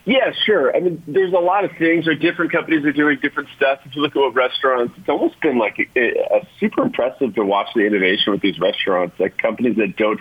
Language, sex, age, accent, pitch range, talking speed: English, male, 40-59, American, 105-140 Hz, 255 wpm